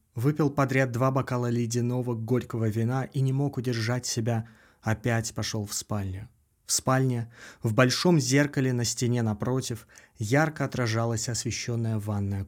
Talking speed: 135 wpm